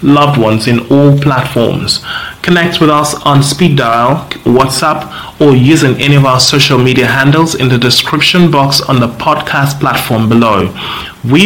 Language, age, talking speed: English, 30-49, 155 wpm